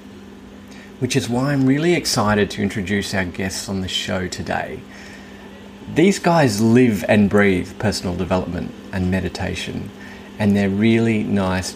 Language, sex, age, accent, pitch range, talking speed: English, male, 30-49, Australian, 100-120 Hz, 140 wpm